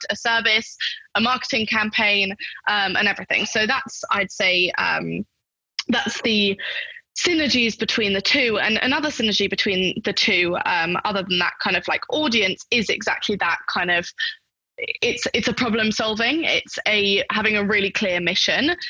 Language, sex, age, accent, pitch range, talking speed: English, female, 20-39, British, 190-235 Hz, 160 wpm